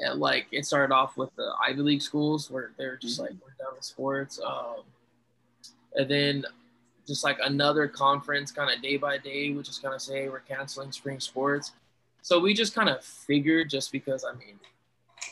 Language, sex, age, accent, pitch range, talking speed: English, male, 20-39, American, 130-145 Hz, 190 wpm